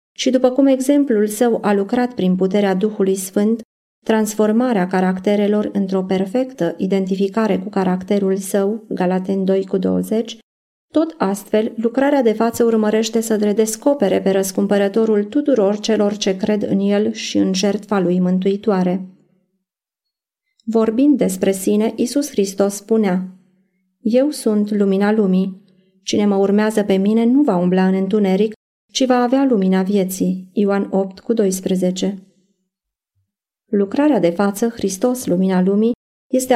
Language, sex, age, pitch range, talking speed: Romanian, female, 30-49, 190-225 Hz, 125 wpm